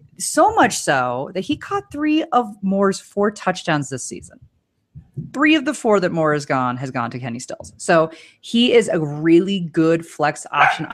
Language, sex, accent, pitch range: English, female, American, 145-205 Hz